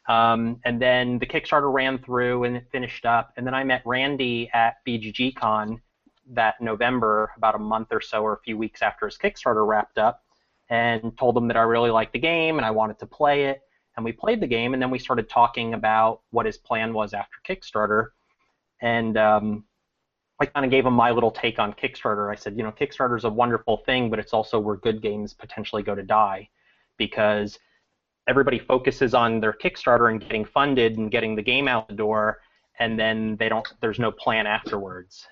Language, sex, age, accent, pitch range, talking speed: English, male, 30-49, American, 110-125 Hz, 205 wpm